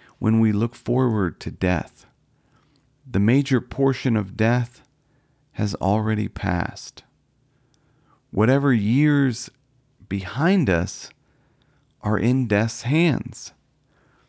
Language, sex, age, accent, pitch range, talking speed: English, male, 40-59, American, 105-135 Hz, 90 wpm